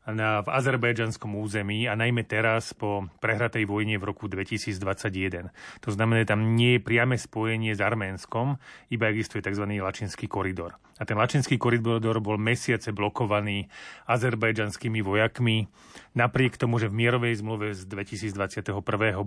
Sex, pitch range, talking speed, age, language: male, 100-115 Hz, 145 wpm, 30-49, Slovak